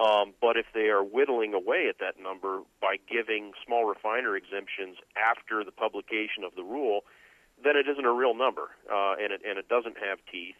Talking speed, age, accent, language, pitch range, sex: 200 wpm, 40-59, American, English, 100-145 Hz, male